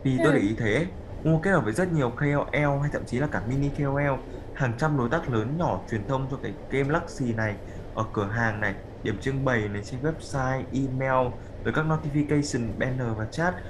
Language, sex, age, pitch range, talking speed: Vietnamese, male, 20-39, 110-145 Hz, 210 wpm